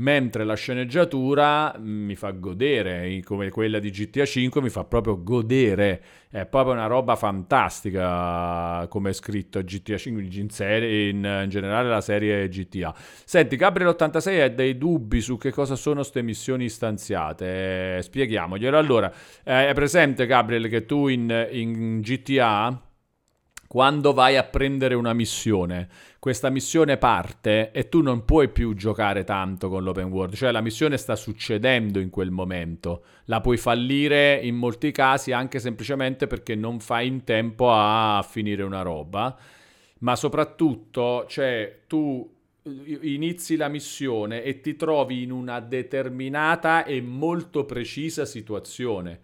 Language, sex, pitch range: Italian, male, 105-135 Hz